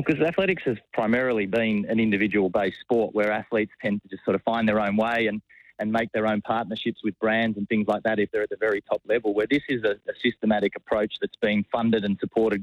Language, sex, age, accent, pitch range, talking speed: English, male, 30-49, Australian, 105-120 Hz, 240 wpm